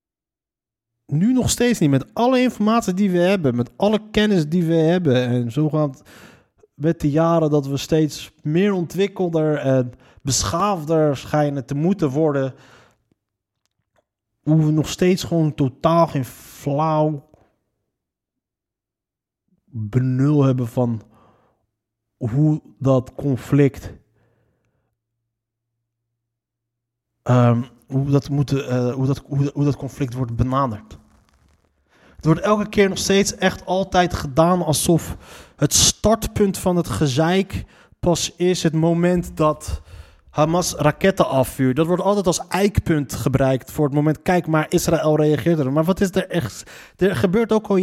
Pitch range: 125-180 Hz